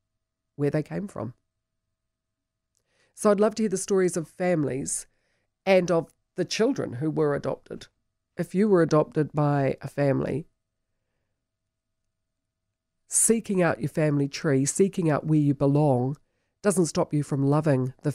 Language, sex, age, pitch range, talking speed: English, female, 40-59, 110-155 Hz, 140 wpm